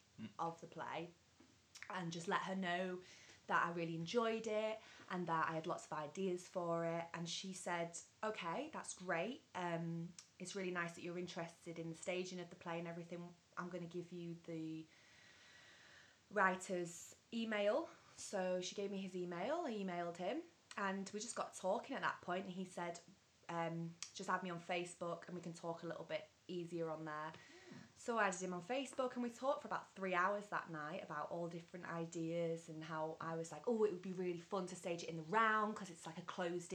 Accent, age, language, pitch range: British, 20-39, English, 165-185 Hz